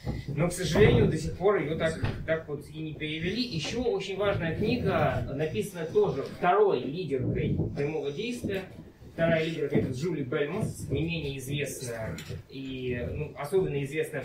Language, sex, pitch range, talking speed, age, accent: Russian, male, 125-160 Hz, 145 wpm, 20-39, native